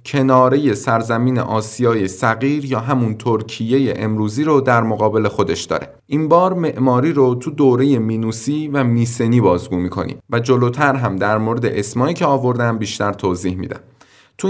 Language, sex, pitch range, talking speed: Persian, male, 110-140 Hz, 150 wpm